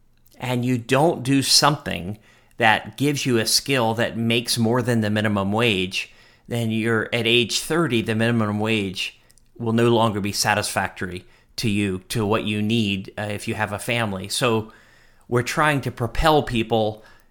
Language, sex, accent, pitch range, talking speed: English, male, American, 105-125 Hz, 165 wpm